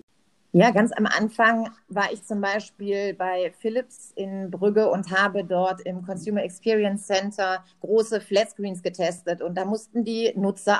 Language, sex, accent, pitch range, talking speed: German, female, German, 190-220 Hz, 155 wpm